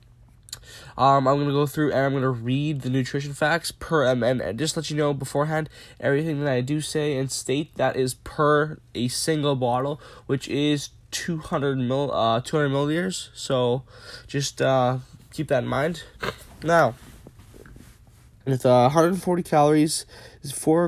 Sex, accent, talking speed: male, American, 165 wpm